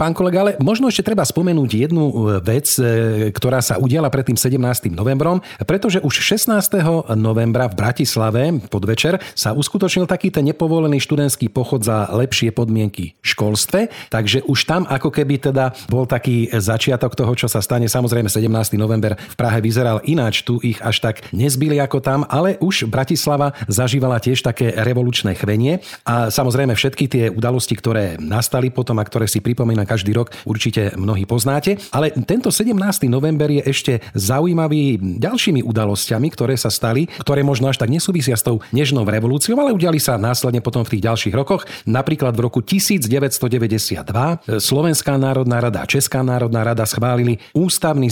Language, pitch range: Slovak, 115-145 Hz